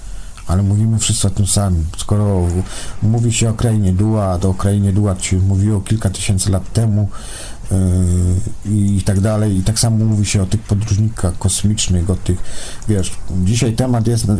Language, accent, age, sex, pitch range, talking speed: Polish, native, 50-69, male, 90-110 Hz, 165 wpm